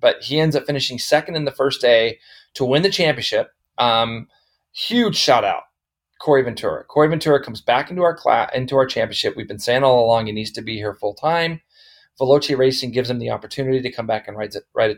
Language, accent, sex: English, American, male